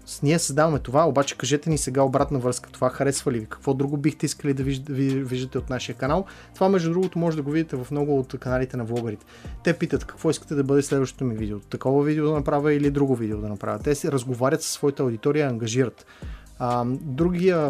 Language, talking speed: Bulgarian, 205 wpm